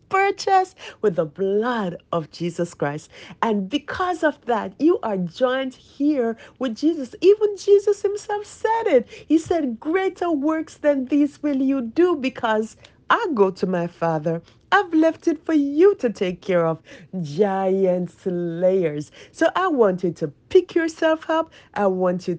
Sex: female